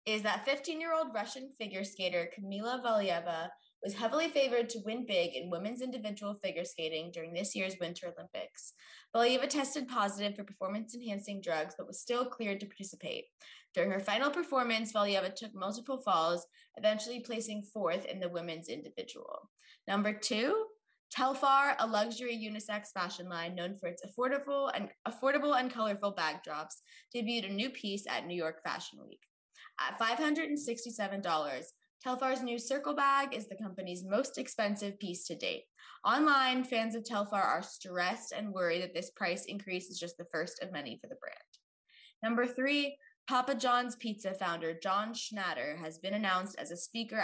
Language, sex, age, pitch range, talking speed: English, female, 20-39, 190-255 Hz, 160 wpm